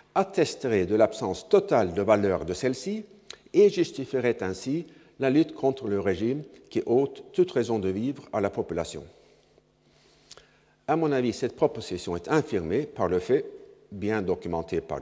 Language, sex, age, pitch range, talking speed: French, male, 60-79, 110-165 Hz, 150 wpm